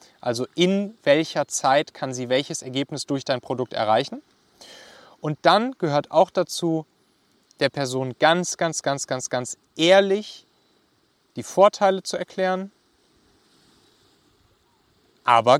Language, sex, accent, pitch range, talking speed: German, male, German, 140-185 Hz, 115 wpm